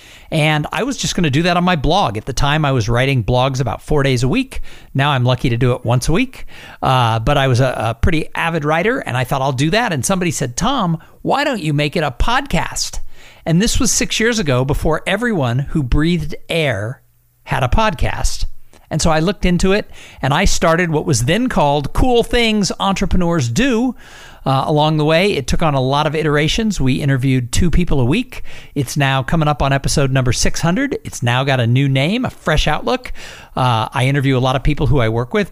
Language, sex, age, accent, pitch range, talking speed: English, male, 50-69, American, 125-165 Hz, 225 wpm